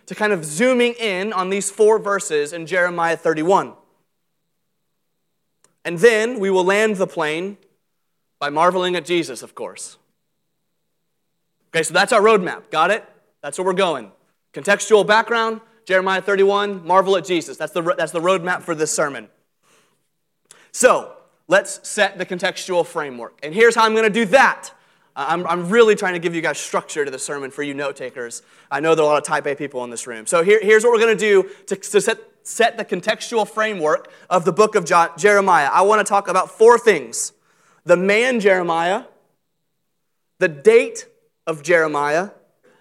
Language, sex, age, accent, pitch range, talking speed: English, male, 30-49, American, 170-215 Hz, 175 wpm